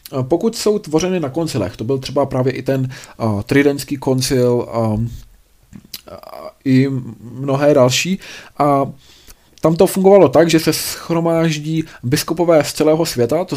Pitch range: 125-150 Hz